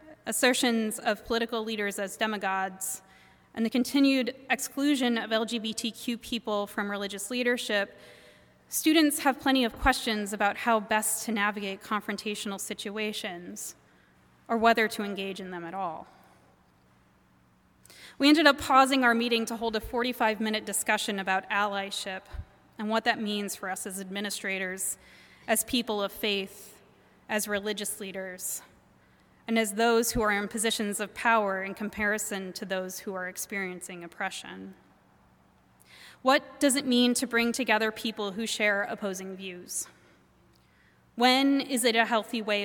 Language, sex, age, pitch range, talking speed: English, female, 20-39, 200-240 Hz, 140 wpm